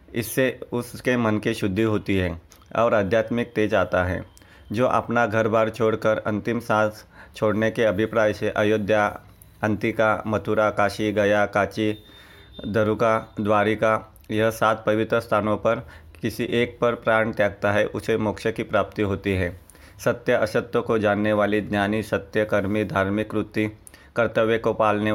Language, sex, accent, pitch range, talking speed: Hindi, male, native, 105-110 Hz, 145 wpm